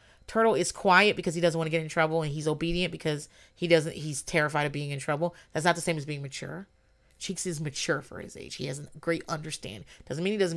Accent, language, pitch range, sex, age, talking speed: American, English, 150-185 Hz, female, 30-49, 255 wpm